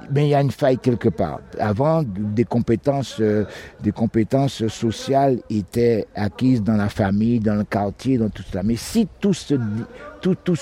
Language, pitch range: French, 110-140 Hz